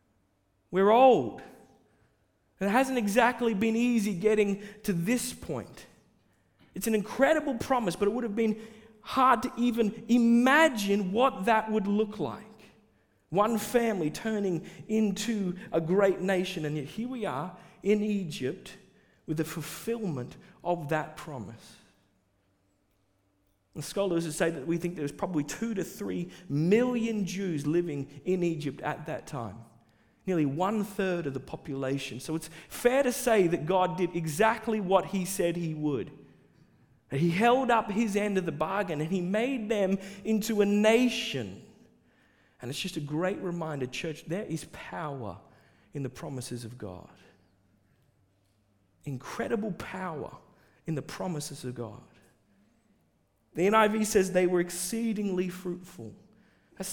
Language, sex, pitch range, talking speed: English, male, 140-215 Hz, 140 wpm